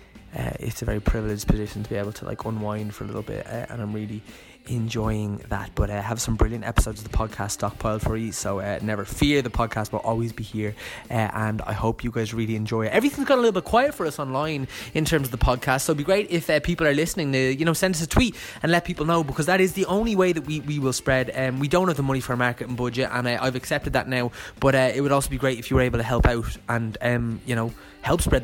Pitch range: 110-135 Hz